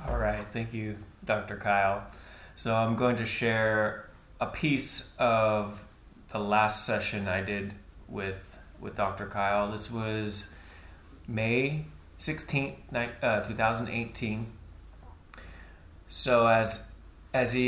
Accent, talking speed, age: American, 110 wpm, 20-39